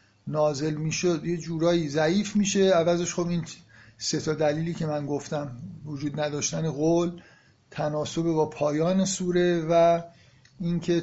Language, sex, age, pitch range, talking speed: Persian, male, 50-69, 140-170 Hz, 130 wpm